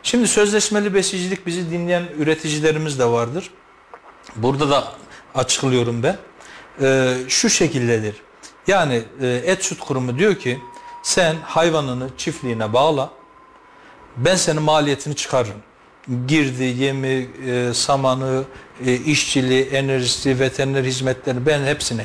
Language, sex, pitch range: Turkish, male, 130-185 Hz